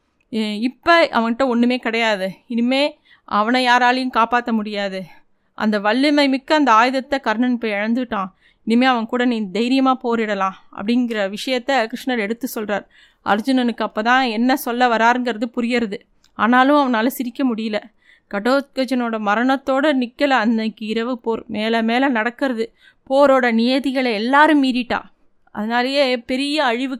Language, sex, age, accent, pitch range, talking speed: Tamil, female, 20-39, native, 225-265 Hz, 120 wpm